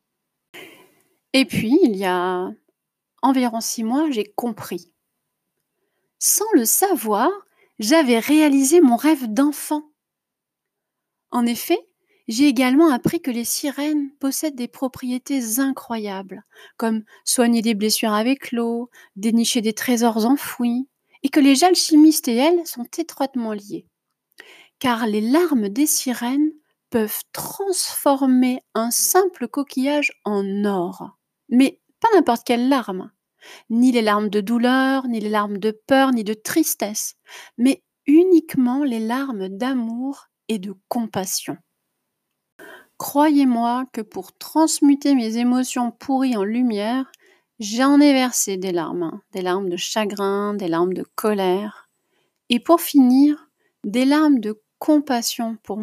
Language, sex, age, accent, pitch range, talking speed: French, female, 30-49, French, 220-295 Hz, 125 wpm